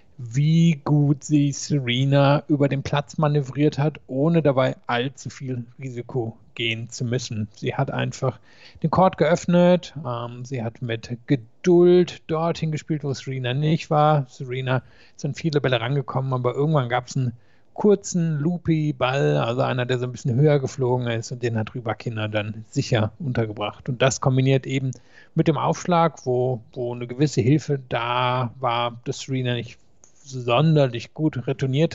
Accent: German